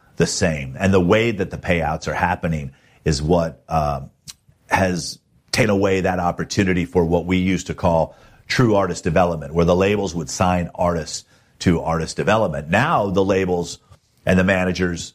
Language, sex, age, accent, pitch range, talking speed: English, male, 50-69, American, 85-95 Hz, 165 wpm